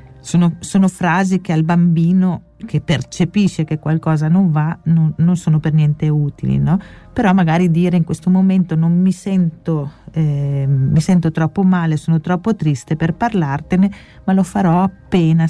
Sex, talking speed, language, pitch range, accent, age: female, 165 wpm, Italian, 155-185 Hz, native, 40-59